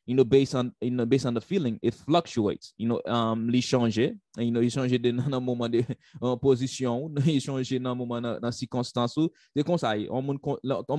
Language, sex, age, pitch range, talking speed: English, male, 20-39, 120-145 Hz, 225 wpm